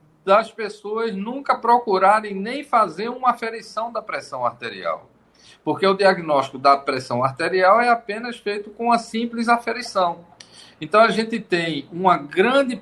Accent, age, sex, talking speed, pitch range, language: Brazilian, 50-69, male, 140 wpm, 170-230 Hz, Portuguese